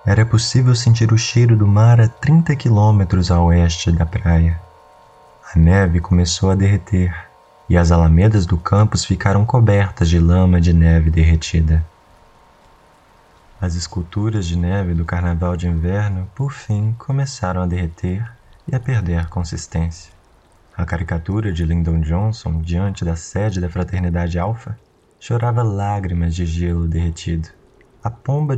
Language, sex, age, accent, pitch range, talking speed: Portuguese, male, 20-39, Brazilian, 85-115 Hz, 140 wpm